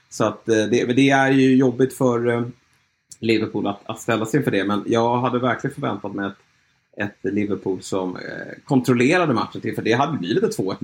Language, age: Swedish, 30-49